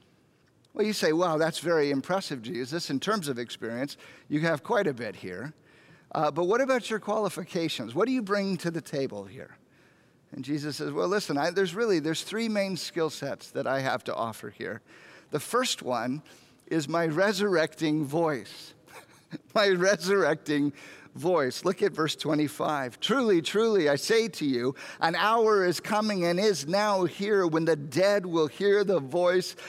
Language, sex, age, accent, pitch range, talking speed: English, male, 50-69, American, 150-195 Hz, 170 wpm